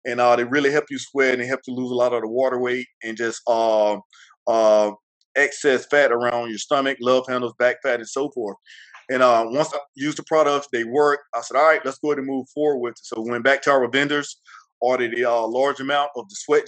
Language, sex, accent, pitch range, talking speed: English, male, American, 125-145 Hz, 250 wpm